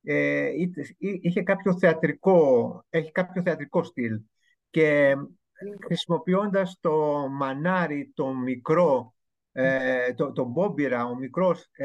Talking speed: 100 wpm